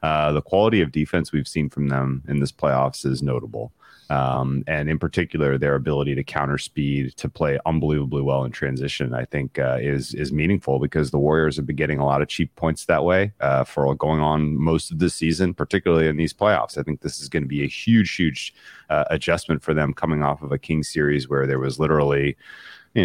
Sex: male